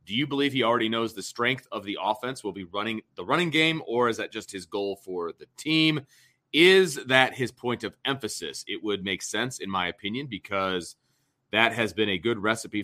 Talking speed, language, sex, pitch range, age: 215 wpm, English, male, 105-130 Hz, 30-49